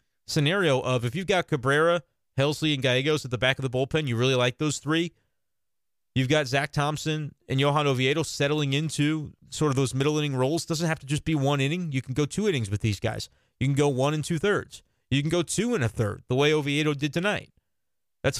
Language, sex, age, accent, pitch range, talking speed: English, male, 30-49, American, 130-155 Hz, 230 wpm